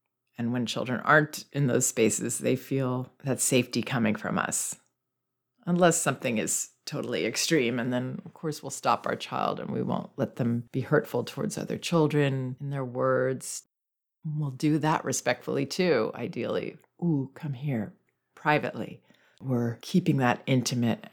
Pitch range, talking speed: 130-160 Hz, 155 wpm